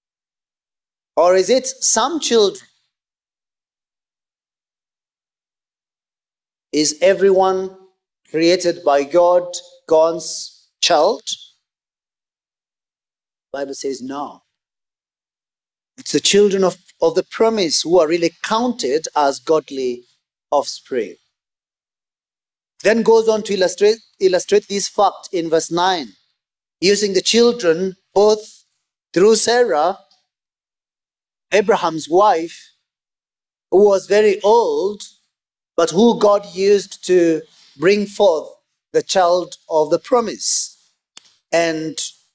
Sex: male